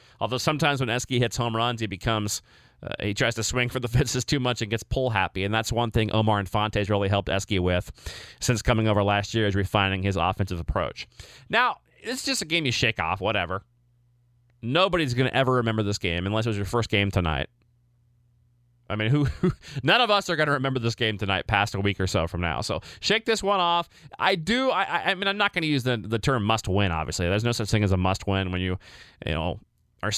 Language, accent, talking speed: English, American, 245 wpm